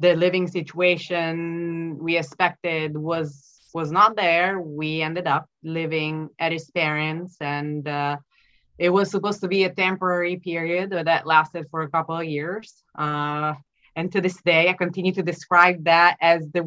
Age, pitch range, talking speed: 20-39, 150-175 Hz, 160 wpm